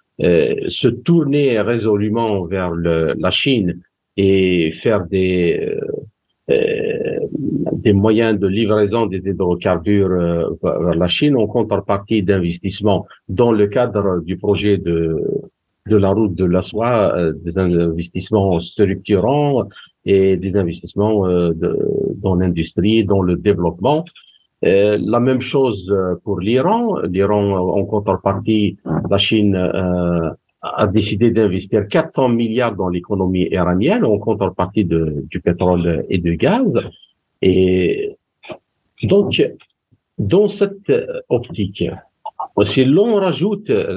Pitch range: 90-115 Hz